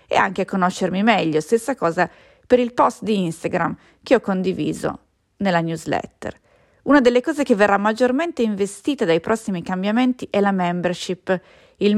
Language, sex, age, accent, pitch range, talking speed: English, female, 30-49, Italian, 180-235 Hz, 155 wpm